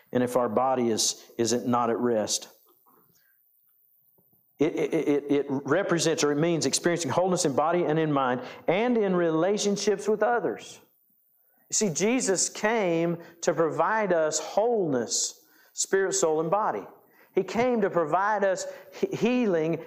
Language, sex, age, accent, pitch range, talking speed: English, male, 50-69, American, 130-175 Hz, 145 wpm